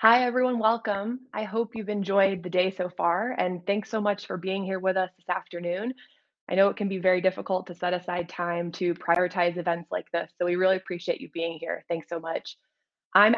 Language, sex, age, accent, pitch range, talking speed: English, female, 20-39, American, 175-210 Hz, 220 wpm